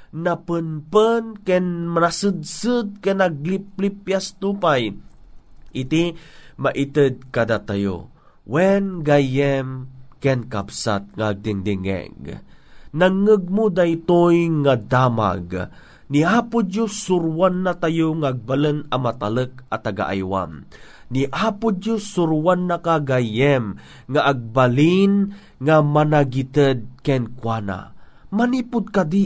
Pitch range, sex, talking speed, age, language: 130-180 Hz, male, 95 wpm, 30-49, Filipino